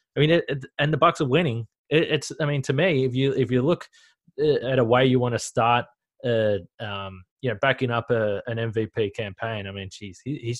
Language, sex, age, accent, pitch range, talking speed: English, male, 20-39, Australian, 115-140 Hz, 215 wpm